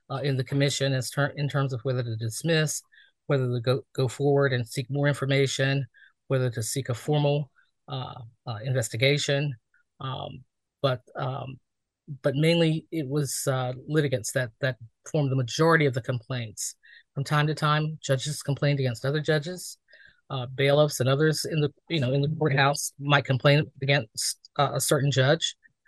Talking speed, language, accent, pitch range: 165 wpm, English, American, 130-150 Hz